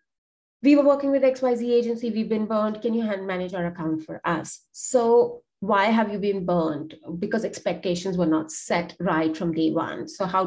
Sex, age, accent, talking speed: female, 30-49, Indian, 195 wpm